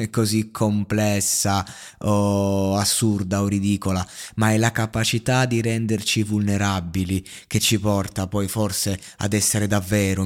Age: 20-39